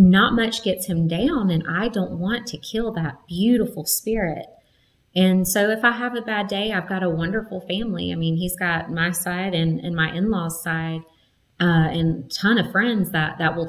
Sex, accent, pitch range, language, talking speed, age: female, American, 160-185 Hz, English, 200 wpm, 30-49